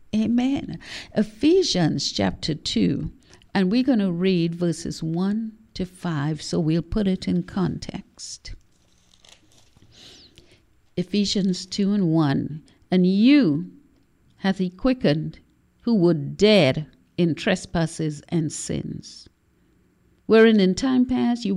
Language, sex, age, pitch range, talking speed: English, female, 50-69, 160-210 Hz, 110 wpm